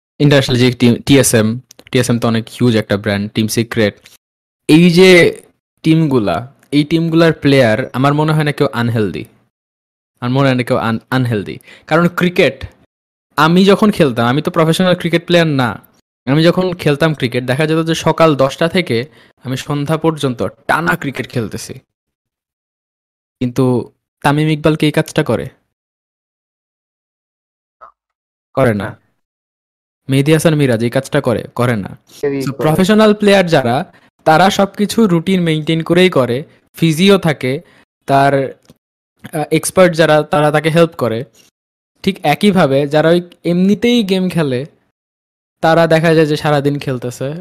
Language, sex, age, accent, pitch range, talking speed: Bengali, male, 20-39, native, 120-165 Hz, 120 wpm